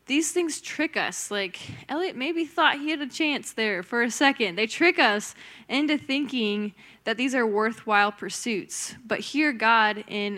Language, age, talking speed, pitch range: English, 10-29, 175 wpm, 205-260 Hz